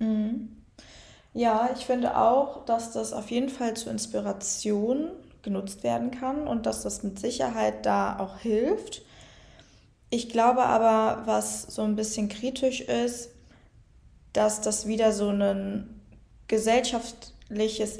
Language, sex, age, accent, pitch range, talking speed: German, female, 20-39, German, 195-230 Hz, 125 wpm